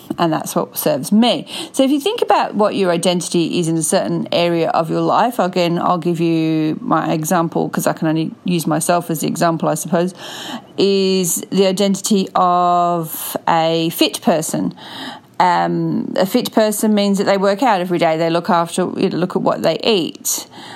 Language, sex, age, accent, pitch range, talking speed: English, female, 40-59, Australian, 165-205 Hz, 190 wpm